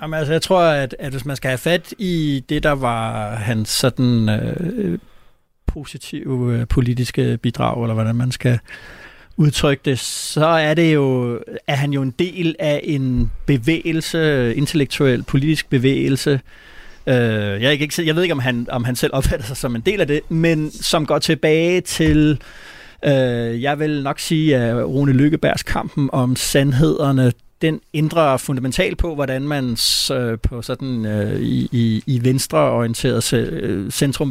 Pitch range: 120-150 Hz